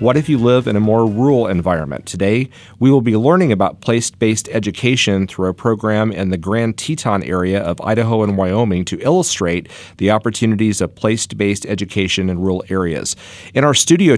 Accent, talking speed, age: American, 180 wpm, 40-59